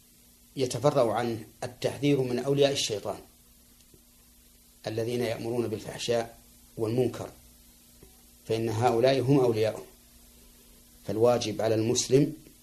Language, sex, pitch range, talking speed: Arabic, male, 105-125 Hz, 80 wpm